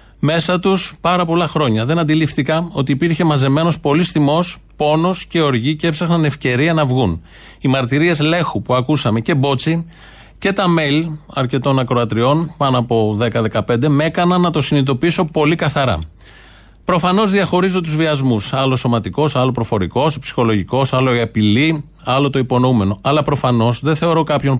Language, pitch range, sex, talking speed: Greek, 125-160 Hz, male, 150 wpm